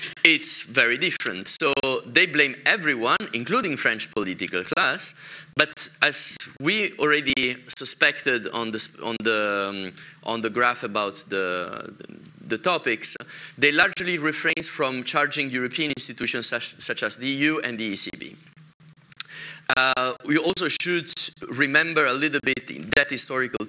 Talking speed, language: 135 wpm, English